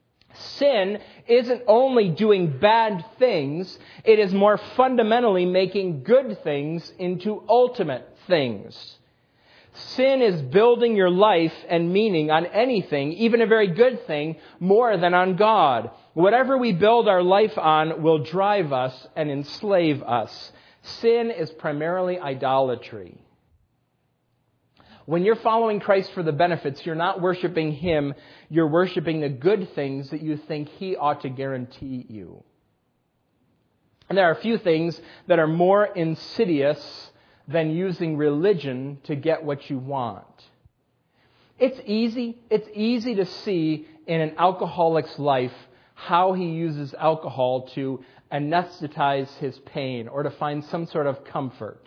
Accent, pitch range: American, 145-205 Hz